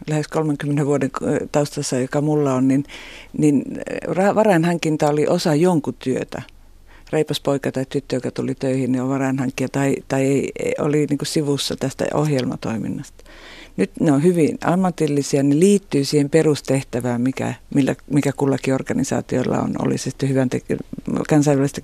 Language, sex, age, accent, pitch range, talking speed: Finnish, female, 50-69, native, 135-160 Hz, 145 wpm